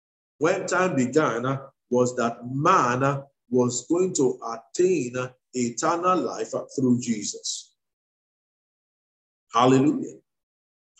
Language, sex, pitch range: English, male, 120-170 Hz